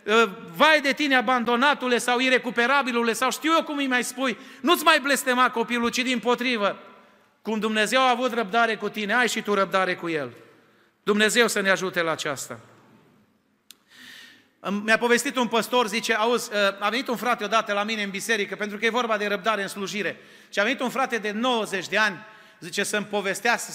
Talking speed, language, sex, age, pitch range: 185 wpm, Romanian, male, 30-49, 200-245 Hz